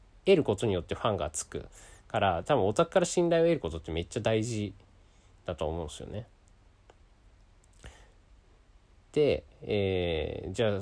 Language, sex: Japanese, male